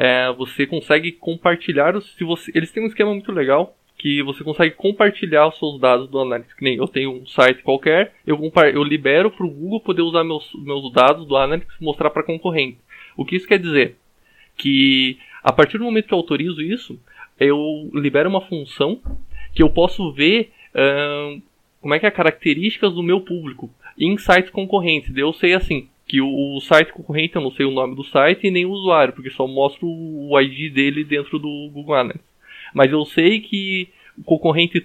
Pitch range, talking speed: 140-185 Hz, 195 wpm